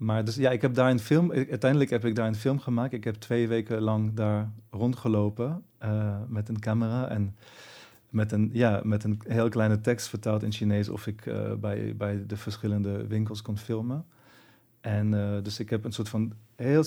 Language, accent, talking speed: Dutch, Dutch, 205 wpm